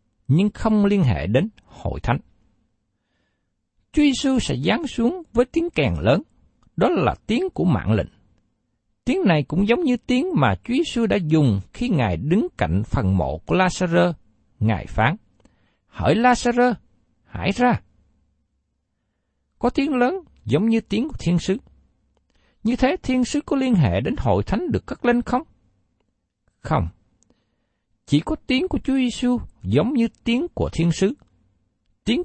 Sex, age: male, 60-79